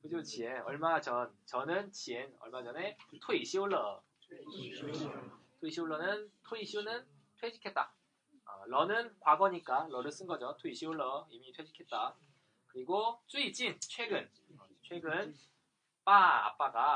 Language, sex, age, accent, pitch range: Korean, male, 20-39, native, 150-205 Hz